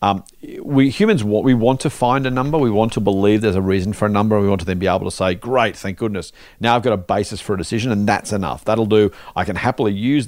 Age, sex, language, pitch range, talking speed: 40-59, male, English, 100-135 Hz, 280 wpm